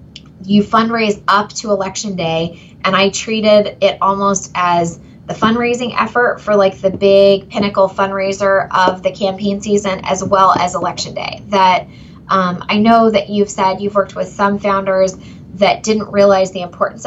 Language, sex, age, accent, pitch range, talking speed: English, female, 20-39, American, 180-205 Hz, 165 wpm